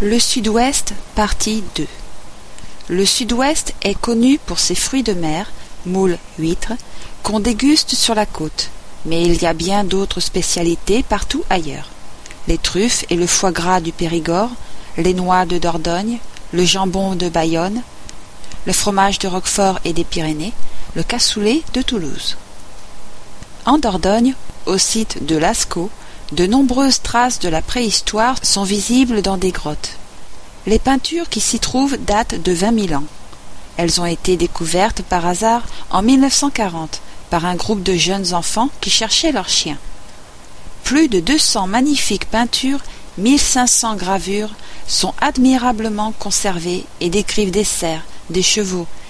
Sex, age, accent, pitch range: female, 40-59, French, 175-235 Hz